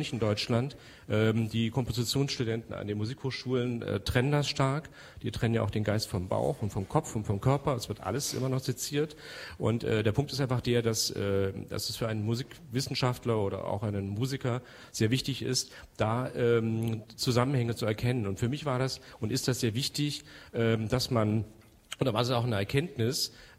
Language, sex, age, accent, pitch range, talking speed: German, male, 40-59, German, 110-130 Hz, 180 wpm